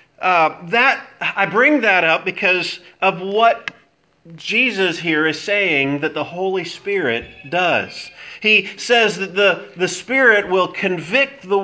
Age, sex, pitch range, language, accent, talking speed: 40-59, male, 150-205 Hz, English, American, 140 wpm